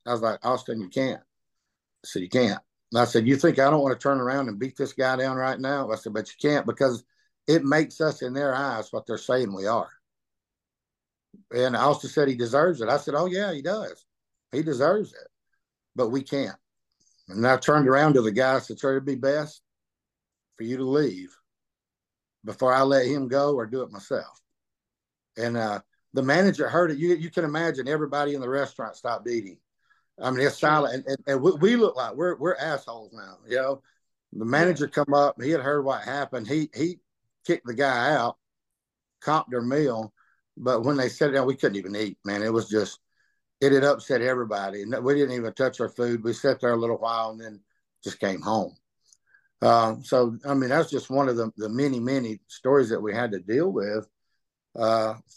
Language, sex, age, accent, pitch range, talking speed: English, male, 50-69, American, 120-145 Hz, 215 wpm